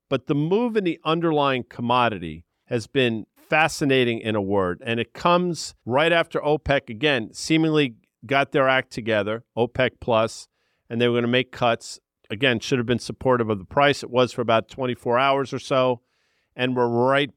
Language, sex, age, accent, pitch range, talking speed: English, male, 50-69, American, 115-145 Hz, 185 wpm